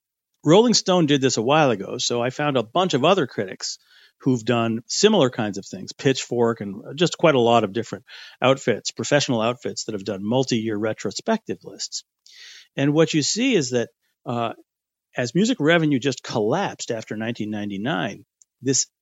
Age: 50-69